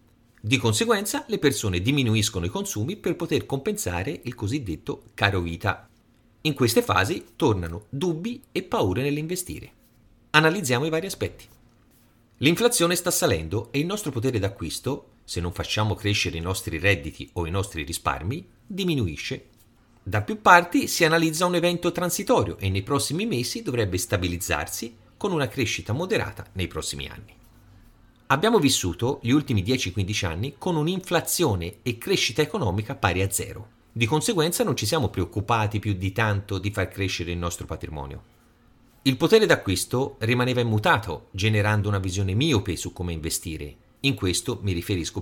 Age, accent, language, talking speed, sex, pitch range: 40-59, native, Italian, 150 wpm, male, 95-140 Hz